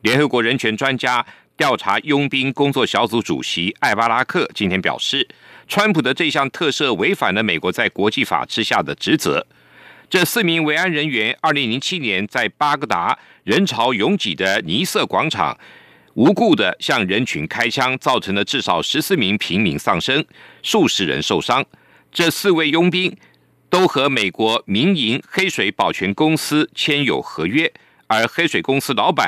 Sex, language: male, German